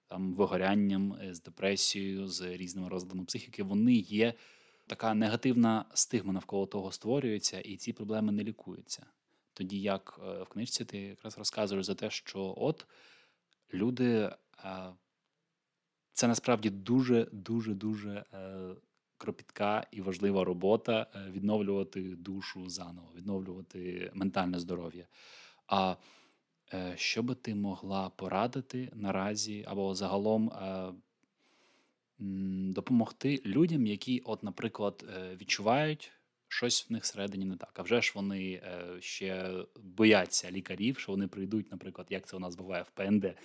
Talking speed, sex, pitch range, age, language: 120 wpm, male, 95-115 Hz, 20-39, Ukrainian